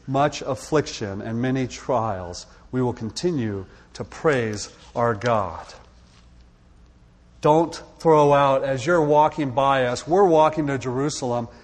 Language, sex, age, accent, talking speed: English, male, 40-59, American, 125 wpm